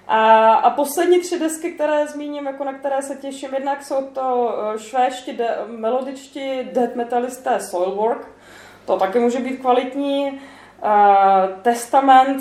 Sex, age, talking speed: female, 20-39, 135 wpm